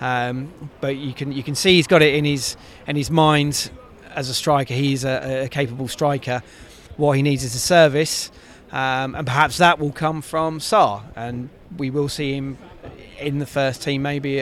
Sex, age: male, 30-49